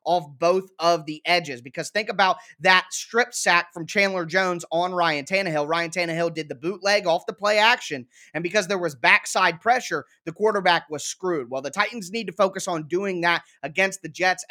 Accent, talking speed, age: American, 200 wpm, 20-39